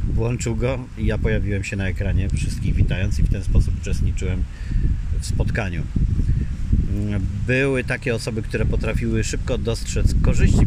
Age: 40-59